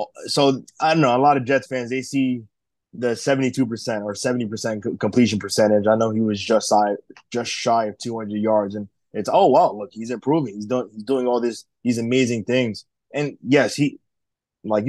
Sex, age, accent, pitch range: male, 20-39, American, 110-130 Hz